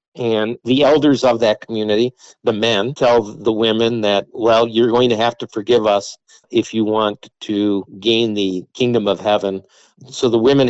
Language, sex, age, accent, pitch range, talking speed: English, male, 50-69, American, 110-125 Hz, 180 wpm